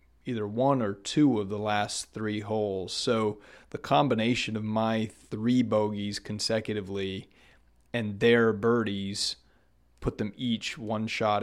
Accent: American